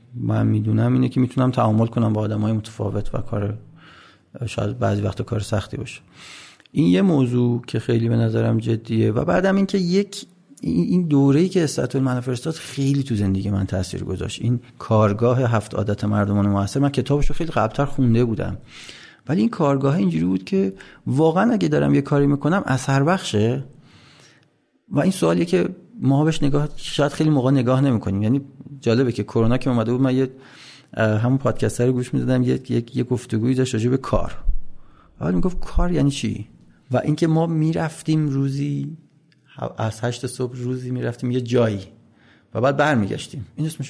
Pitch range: 110-145 Hz